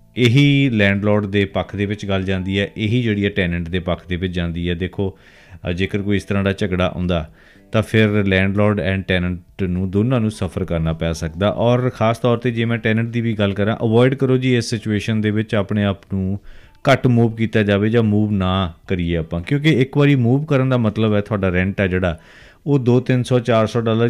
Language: Punjabi